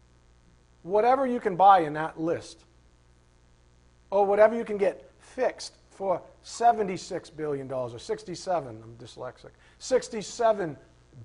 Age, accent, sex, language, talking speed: 50-69, American, male, English, 115 wpm